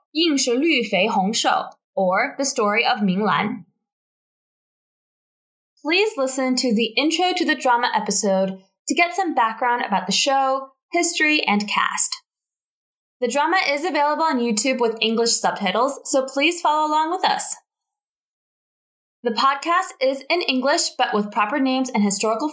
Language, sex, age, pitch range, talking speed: English, female, 10-29, 220-315 Hz, 140 wpm